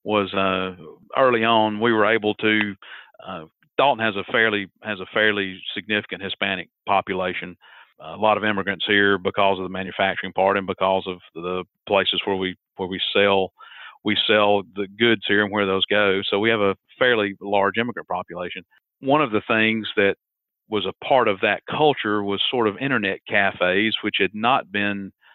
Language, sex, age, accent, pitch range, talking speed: English, male, 50-69, American, 95-110 Hz, 180 wpm